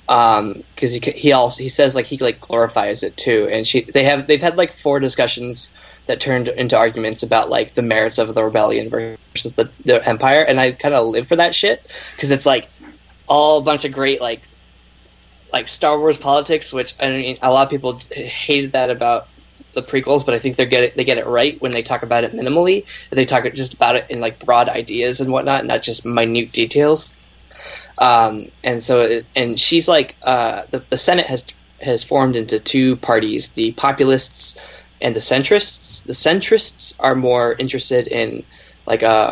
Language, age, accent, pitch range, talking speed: English, 10-29, American, 120-140 Hz, 200 wpm